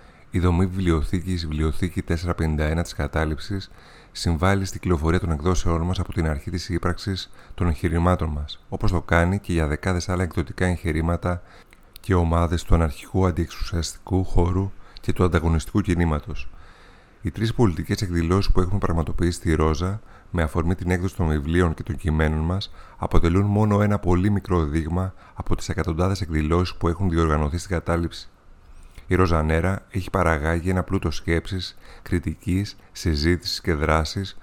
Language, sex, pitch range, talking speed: Greek, male, 80-95 Hz, 150 wpm